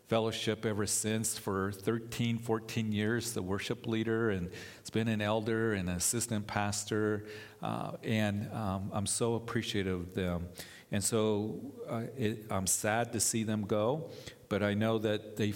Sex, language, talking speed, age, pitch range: male, English, 155 wpm, 50-69, 100-110 Hz